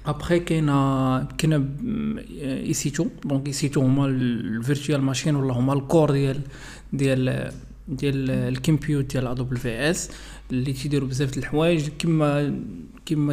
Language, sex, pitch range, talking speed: Arabic, male, 135-155 Hz, 150 wpm